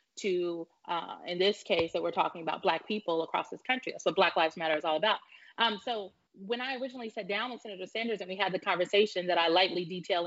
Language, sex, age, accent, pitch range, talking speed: English, female, 30-49, American, 180-245 Hz, 240 wpm